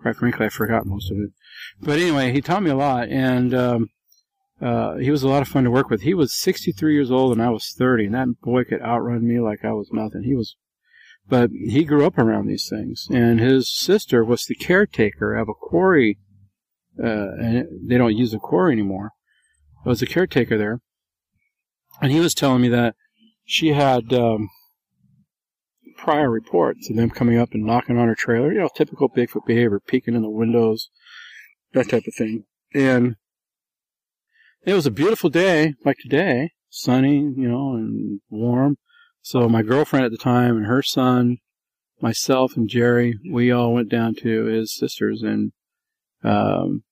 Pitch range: 110-140 Hz